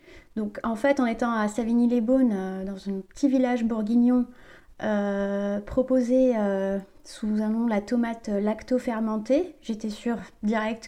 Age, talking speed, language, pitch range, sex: 30-49, 140 wpm, French, 210-255 Hz, female